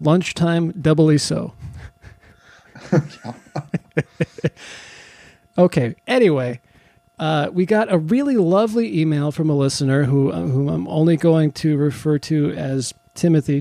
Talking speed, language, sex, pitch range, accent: 115 wpm, English, male, 140-180 Hz, American